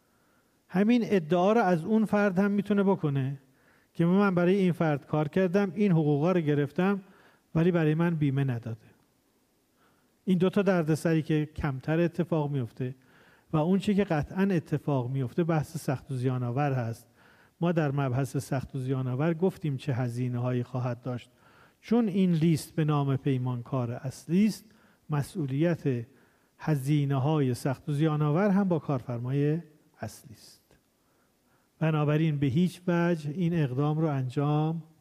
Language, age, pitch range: Persian, 40-59, 135-175 Hz